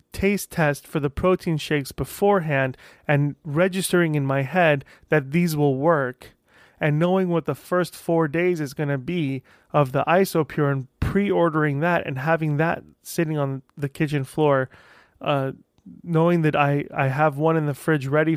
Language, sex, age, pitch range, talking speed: English, male, 20-39, 145-175 Hz, 170 wpm